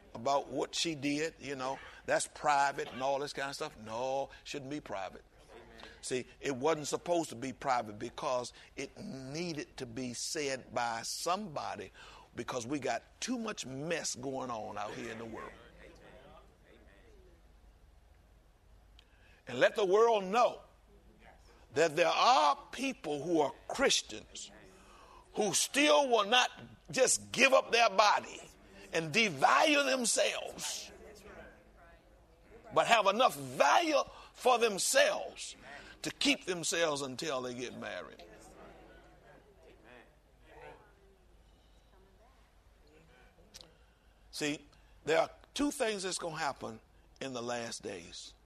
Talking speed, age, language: 120 wpm, 60-79, English